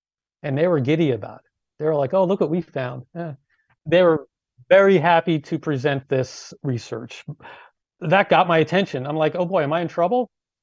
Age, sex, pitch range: 40-59, male, 130-155 Hz